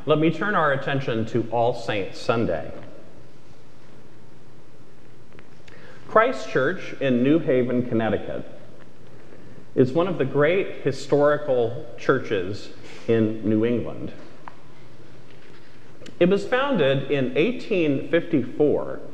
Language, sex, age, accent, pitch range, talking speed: English, male, 40-59, American, 115-150 Hz, 95 wpm